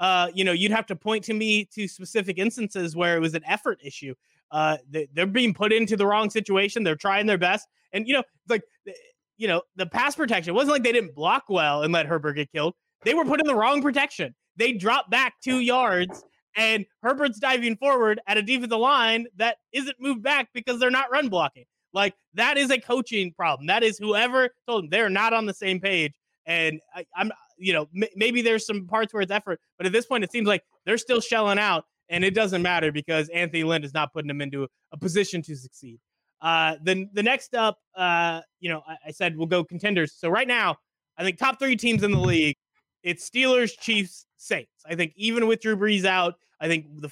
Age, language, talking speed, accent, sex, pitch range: 20-39, English, 230 wpm, American, male, 165-225 Hz